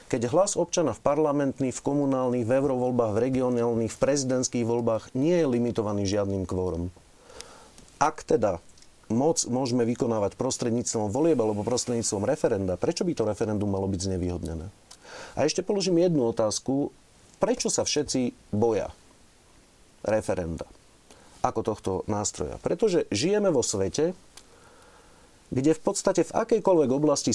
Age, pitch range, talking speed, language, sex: 40-59, 105-145 Hz, 125 wpm, Slovak, male